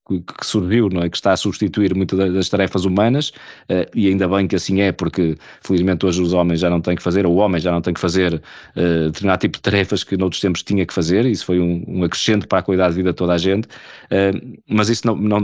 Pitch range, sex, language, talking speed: 90-105 Hz, male, Portuguese, 260 wpm